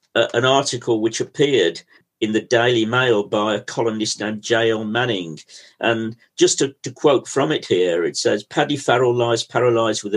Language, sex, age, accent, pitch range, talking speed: English, male, 50-69, British, 110-145 Hz, 175 wpm